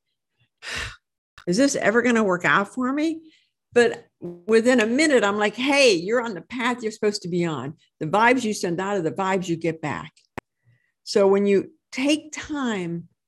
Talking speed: 185 wpm